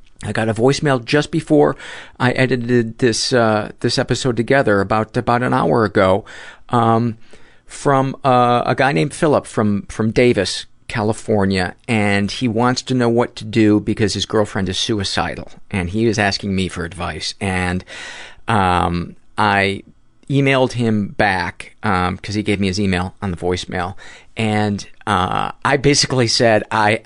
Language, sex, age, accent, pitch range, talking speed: English, male, 40-59, American, 95-120 Hz, 155 wpm